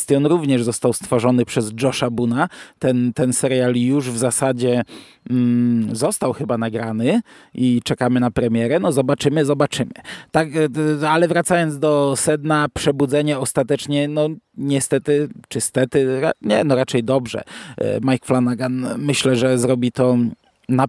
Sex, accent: male, native